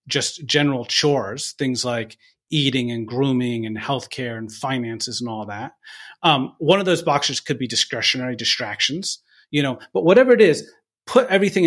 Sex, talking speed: male, 165 wpm